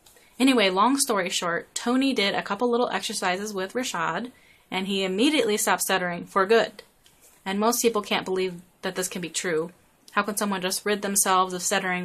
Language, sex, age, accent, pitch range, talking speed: English, female, 20-39, American, 185-225 Hz, 185 wpm